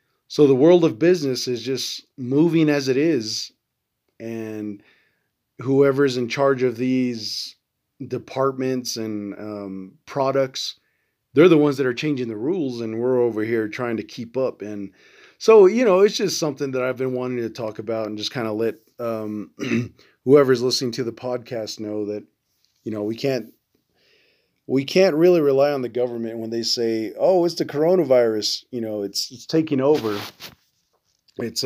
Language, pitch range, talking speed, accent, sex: English, 115-145 Hz, 165 wpm, American, male